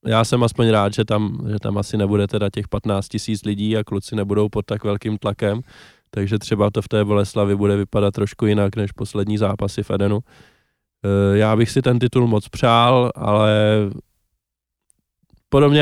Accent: native